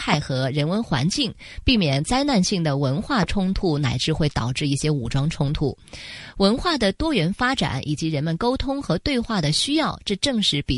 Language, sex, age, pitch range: Chinese, female, 20-39, 145-215 Hz